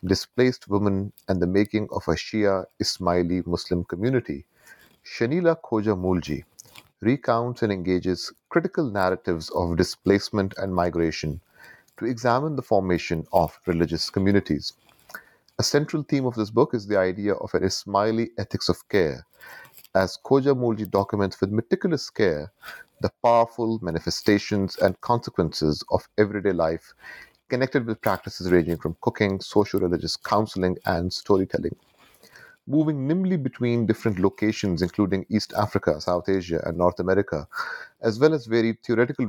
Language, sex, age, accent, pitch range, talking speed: English, male, 30-49, Indian, 90-115 Hz, 135 wpm